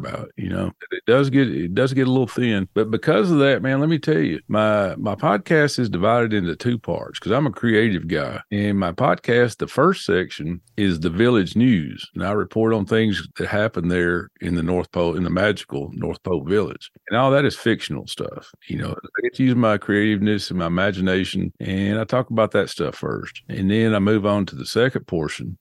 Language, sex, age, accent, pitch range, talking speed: English, male, 50-69, American, 90-115 Hz, 225 wpm